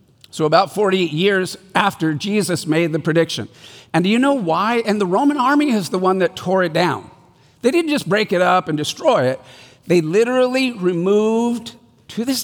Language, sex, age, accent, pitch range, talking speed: English, male, 50-69, American, 150-205 Hz, 190 wpm